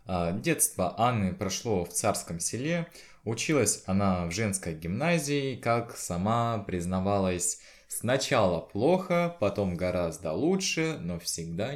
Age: 20-39